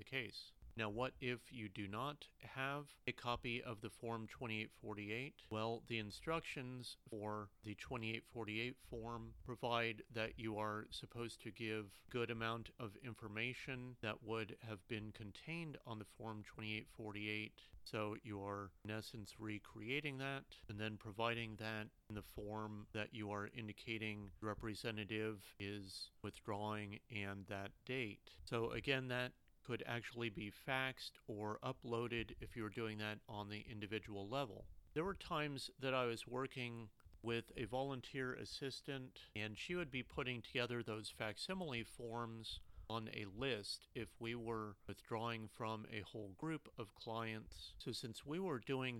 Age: 40-59